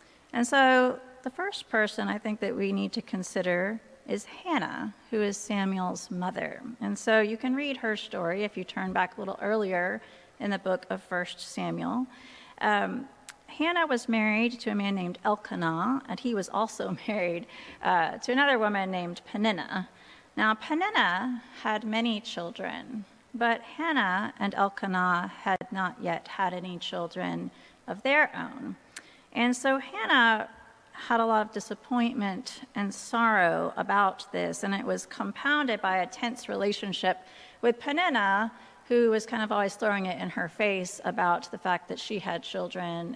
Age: 40-59